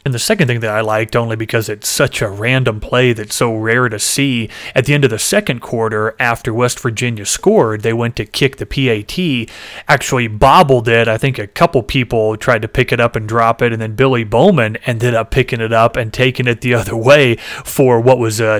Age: 30-49